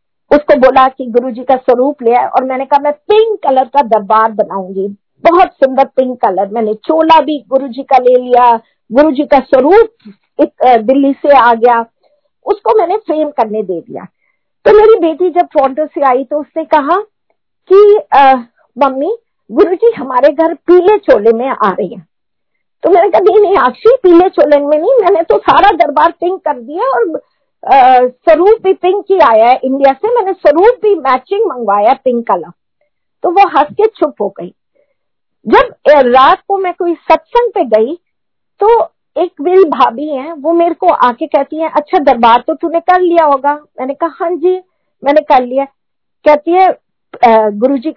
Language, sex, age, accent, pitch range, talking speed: Hindi, female, 50-69, native, 255-360 Hz, 140 wpm